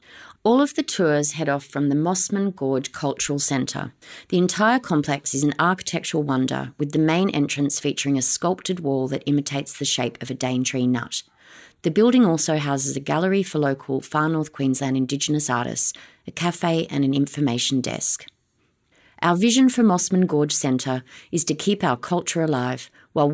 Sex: female